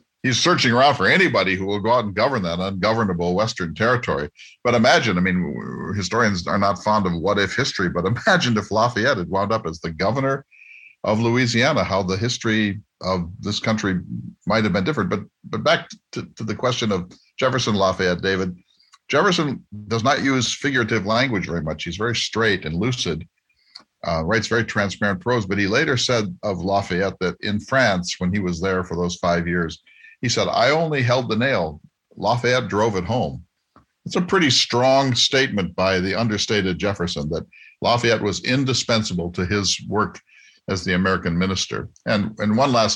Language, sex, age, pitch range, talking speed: English, male, 50-69, 95-115 Hz, 180 wpm